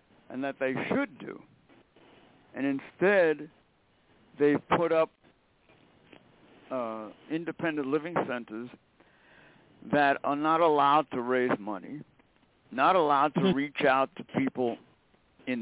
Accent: American